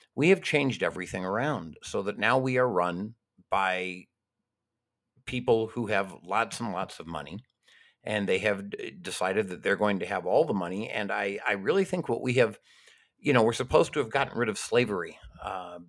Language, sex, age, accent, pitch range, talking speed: English, male, 50-69, American, 100-130 Hz, 195 wpm